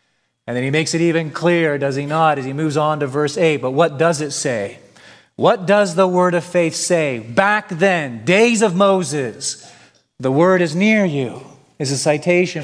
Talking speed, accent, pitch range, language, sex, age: 200 wpm, American, 130-165 Hz, English, male, 40-59